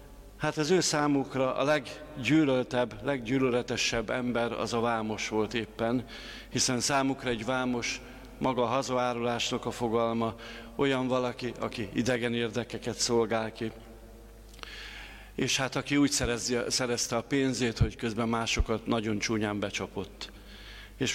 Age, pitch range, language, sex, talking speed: 50-69, 110-130 Hz, Hungarian, male, 120 wpm